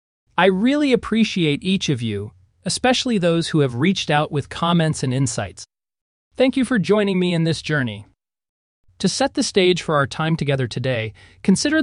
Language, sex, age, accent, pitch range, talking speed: English, male, 30-49, American, 125-200 Hz, 170 wpm